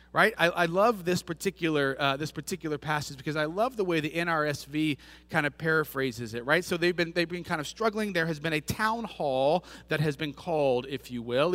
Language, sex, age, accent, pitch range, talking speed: English, male, 30-49, American, 140-195 Hz, 225 wpm